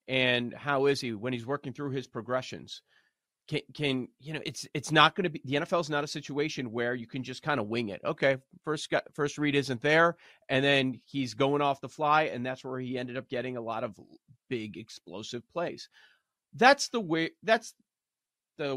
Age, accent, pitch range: 30-49, American, 115-145 Hz